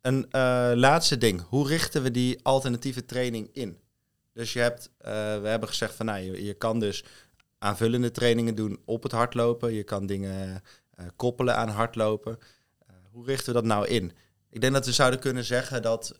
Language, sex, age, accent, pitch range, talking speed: Dutch, male, 20-39, Dutch, 100-120 Hz, 195 wpm